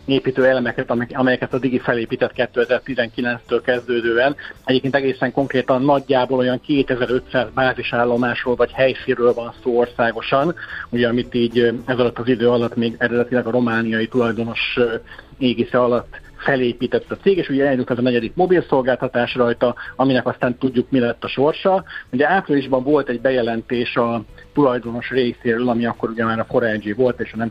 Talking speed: 155 wpm